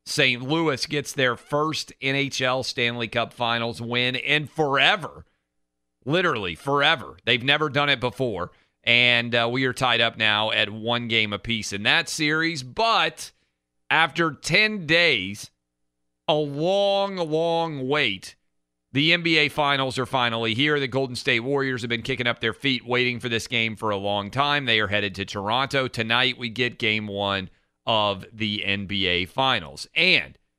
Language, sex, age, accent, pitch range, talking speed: English, male, 40-59, American, 105-140 Hz, 155 wpm